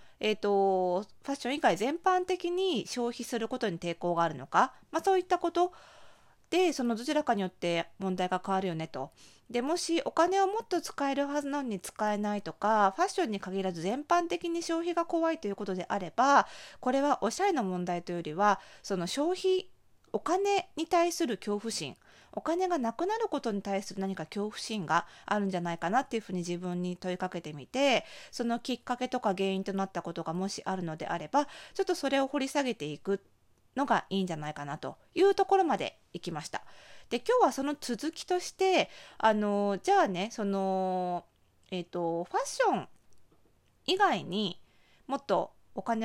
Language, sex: Japanese, female